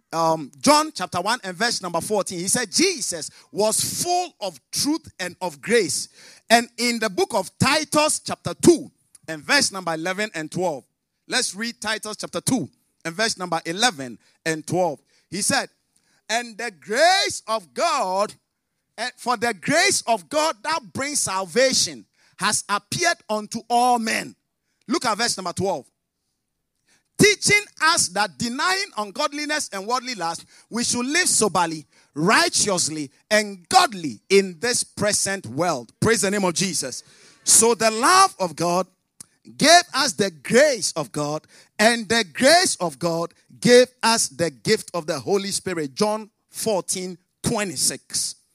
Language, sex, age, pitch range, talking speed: English, male, 50-69, 175-245 Hz, 150 wpm